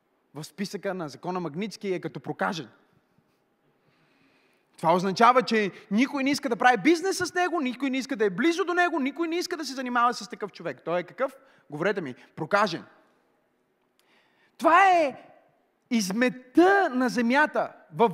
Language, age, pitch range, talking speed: Bulgarian, 30-49, 205-315 Hz, 160 wpm